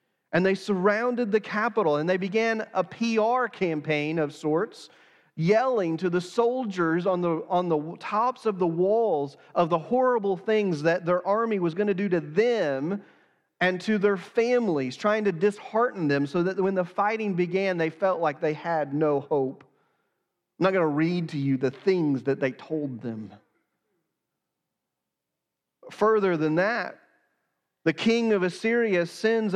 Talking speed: 160 wpm